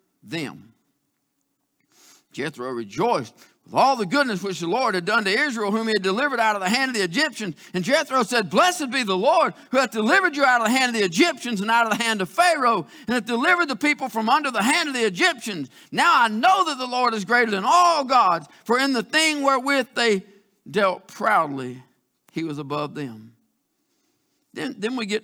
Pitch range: 185-245 Hz